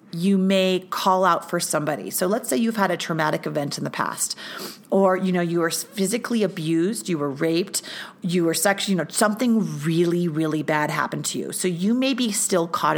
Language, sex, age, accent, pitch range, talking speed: English, female, 40-59, American, 170-215 Hz, 210 wpm